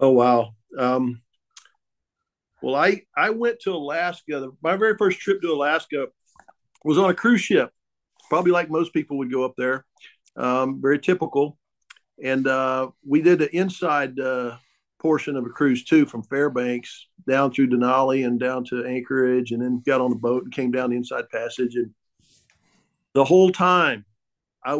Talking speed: 165 wpm